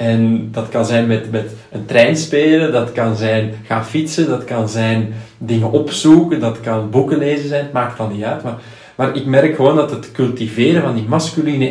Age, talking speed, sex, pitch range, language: 40-59, 205 wpm, male, 110-145 Hz, Dutch